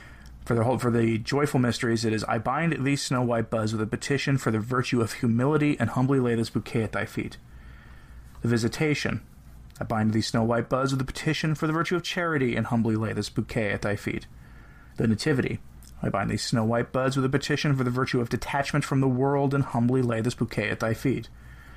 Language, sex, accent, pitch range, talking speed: English, male, American, 115-140 Hz, 225 wpm